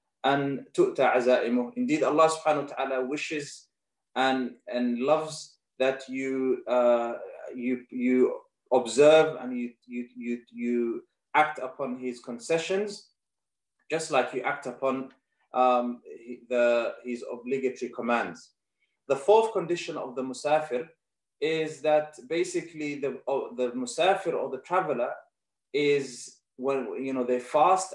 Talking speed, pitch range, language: 125 wpm, 125-165 Hz, English